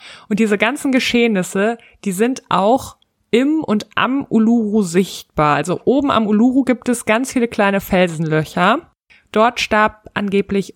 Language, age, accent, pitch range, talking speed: German, 20-39, German, 180-225 Hz, 140 wpm